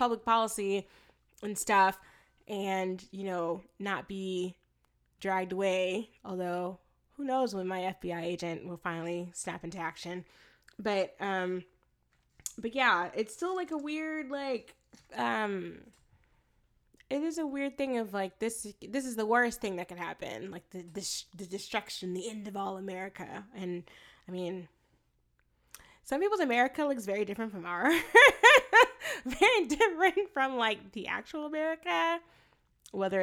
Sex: female